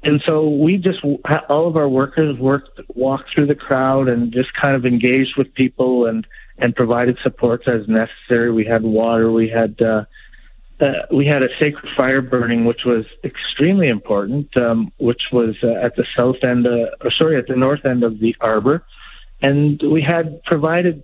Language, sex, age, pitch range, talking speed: English, male, 50-69, 120-140 Hz, 185 wpm